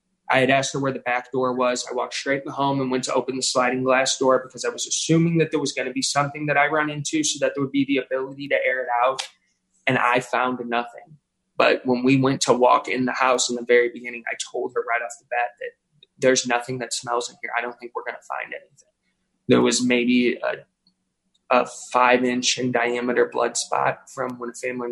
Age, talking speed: 20-39, 250 wpm